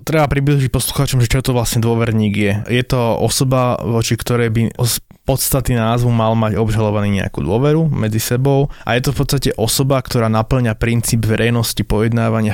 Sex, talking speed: male, 170 wpm